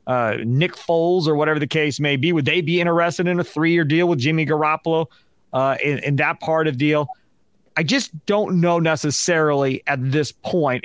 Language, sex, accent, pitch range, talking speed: English, male, American, 135-170 Hz, 195 wpm